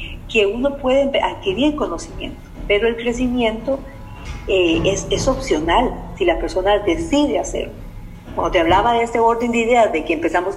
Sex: female